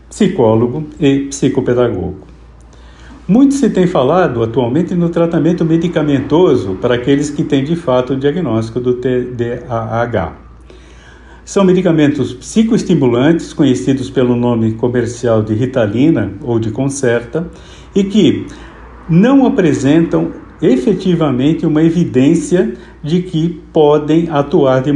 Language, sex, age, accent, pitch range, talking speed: Portuguese, male, 60-79, Brazilian, 120-160 Hz, 110 wpm